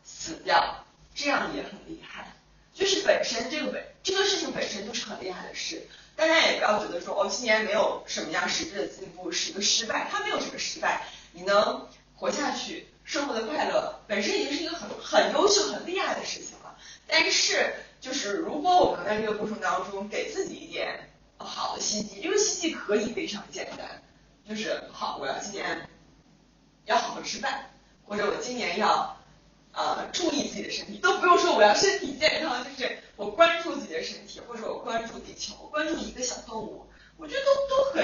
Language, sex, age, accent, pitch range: Chinese, female, 20-39, native, 205-325 Hz